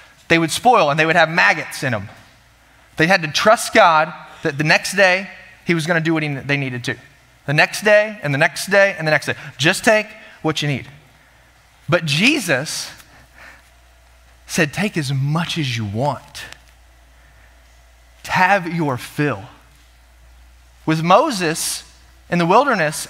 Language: English